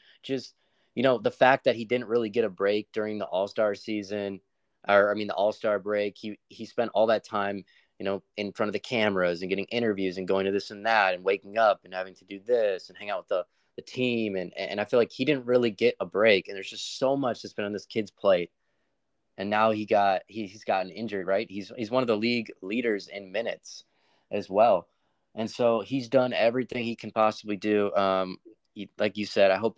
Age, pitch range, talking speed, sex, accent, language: 20-39, 95-110 Hz, 235 wpm, male, American, English